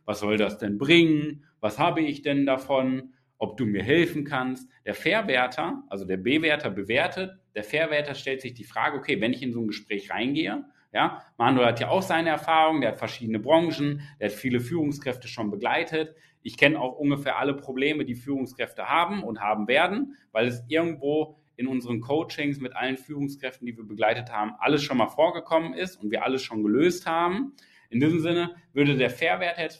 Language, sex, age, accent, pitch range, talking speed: German, male, 30-49, German, 125-165 Hz, 190 wpm